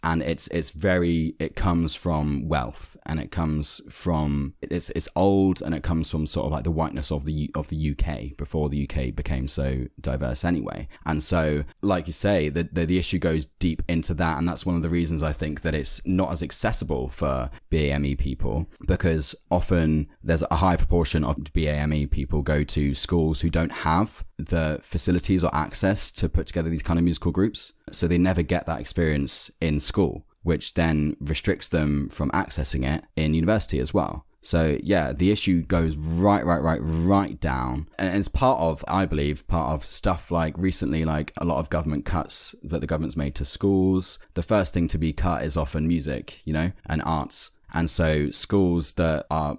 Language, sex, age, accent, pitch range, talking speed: English, male, 10-29, British, 75-85 Hz, 195 wpm